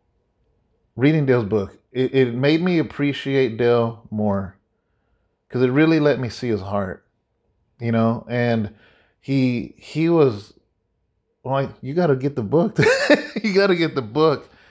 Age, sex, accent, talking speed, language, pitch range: 30-49, male, American, 145 wpm, English, 110-150 Hz